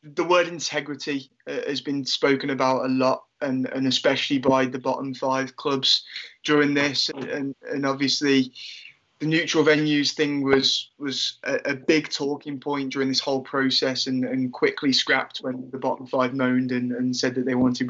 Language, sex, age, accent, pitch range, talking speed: English, male, 20-39, British, 135-150 Hz, 180 wpm